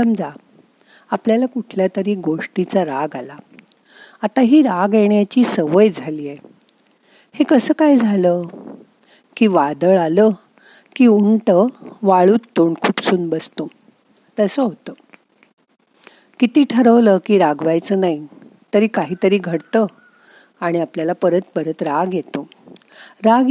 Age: 50-69